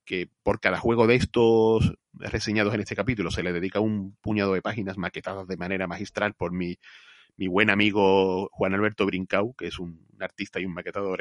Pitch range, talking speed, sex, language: 95-120 Hz, 195 wpm, male, Spanish